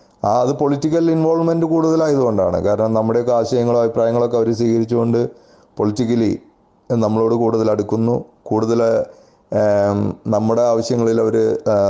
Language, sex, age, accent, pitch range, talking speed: Malayalam, male, 30-49, native, 110-130 Hz, 90 wpm